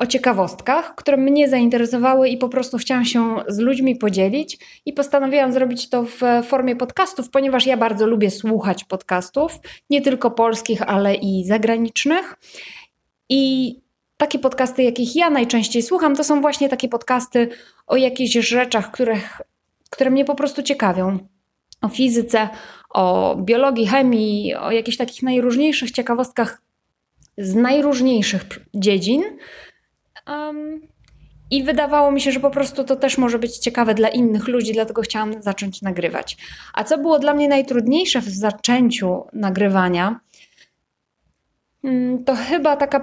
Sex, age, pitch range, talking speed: female, 20-39, 220-275 Hz, 135 wpm